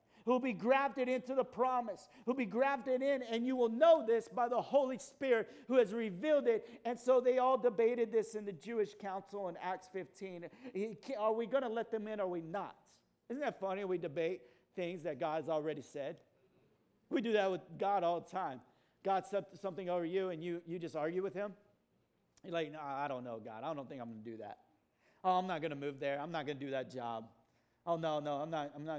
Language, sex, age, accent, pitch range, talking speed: English, male, 50-69, American, 150-205 Hz, 240 wpm